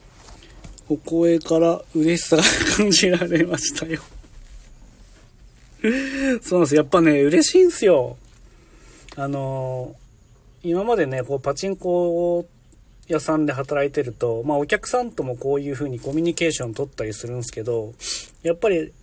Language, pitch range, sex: Japanese, 125-170 Hz, male